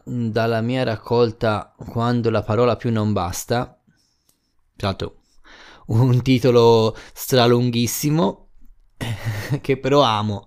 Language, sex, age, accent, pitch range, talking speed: Italian, male, 20-39, native, 100-125 Hz, 85 wpm